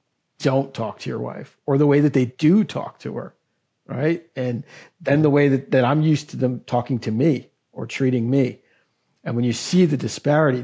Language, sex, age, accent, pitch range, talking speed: English, male, 50-69, American, 125-145 Hz, 210 wpm